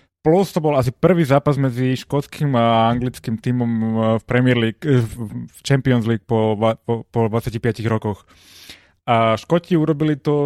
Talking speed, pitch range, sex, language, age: 145 wpm, 115-145 Hz, male, Slovak, 20-39